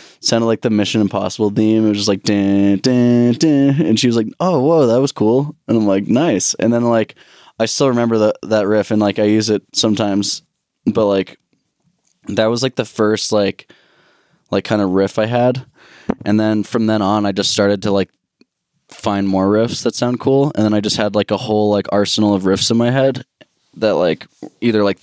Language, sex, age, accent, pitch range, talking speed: English, male, 10-29, American, 100-110 Hz, 215 wpm